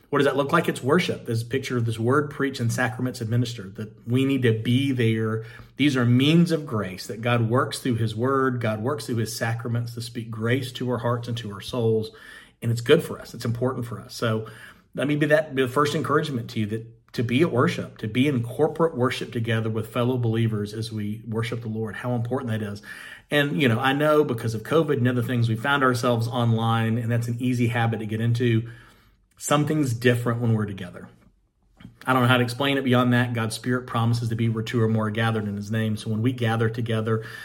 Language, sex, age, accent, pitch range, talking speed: English, male, 40-59, American, 115-125 Hz, 235 wpm